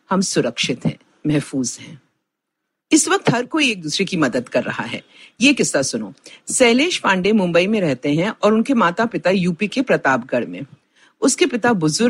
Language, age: Hindi, 50-69